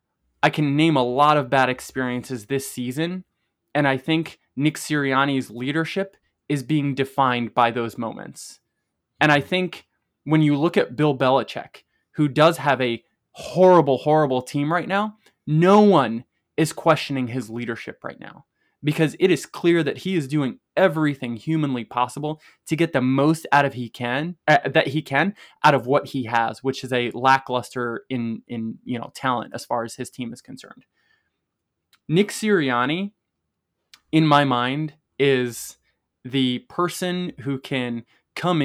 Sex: male